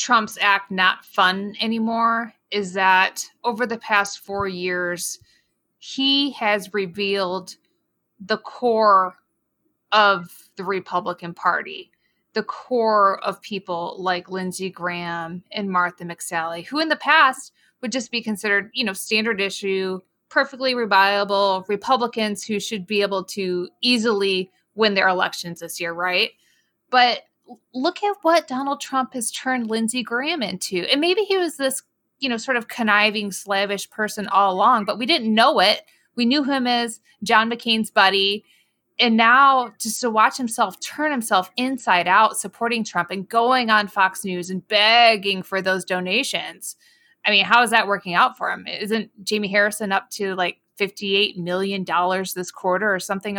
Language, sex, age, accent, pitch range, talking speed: English, female, 20-39, American, 190-240 Hz, 155 wpm